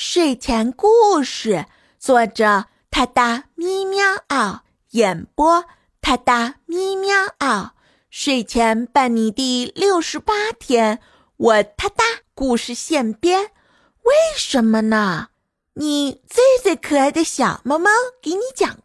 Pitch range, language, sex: 220-345 Hz, Chinese, female